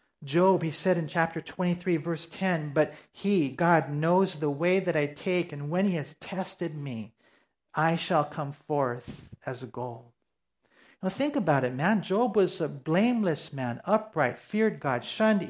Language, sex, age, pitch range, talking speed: English, male, 40-59, 150-200 Hz, 165 wpm